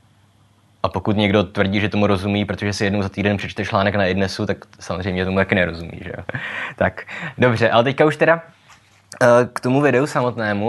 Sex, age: male, 20-39